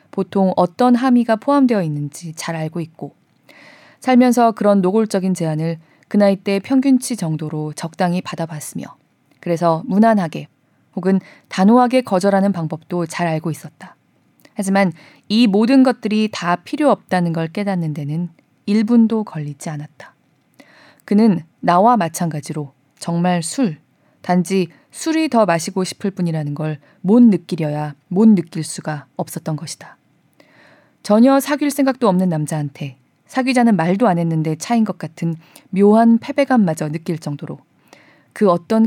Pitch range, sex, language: 160-225 Hz, female, Korean